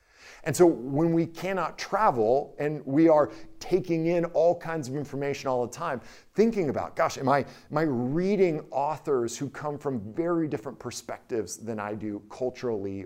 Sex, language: male, English